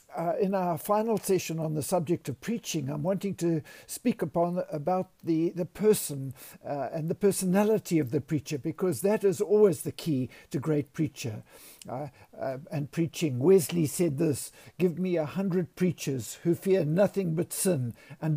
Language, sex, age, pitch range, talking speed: English, male, 60-79, 150-185 Hz, 175 wpm